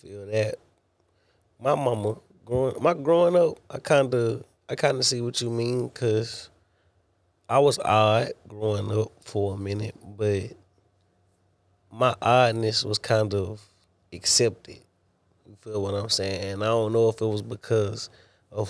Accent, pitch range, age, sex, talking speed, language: American, 100-115 Hz, 30-49, male, 150 wpm, English